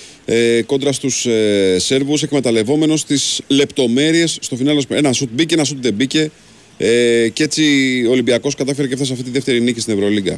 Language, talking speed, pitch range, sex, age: Greek, 170 wpm, 110-145 Hz, male, 40-59